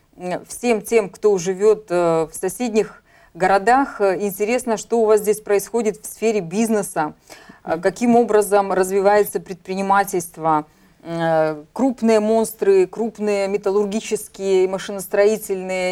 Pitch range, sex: 180-210 Hz, female